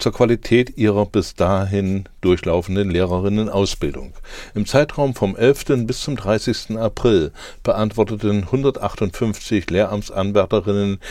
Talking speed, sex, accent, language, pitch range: 95 wpm, male, German, German, 95-120 Hz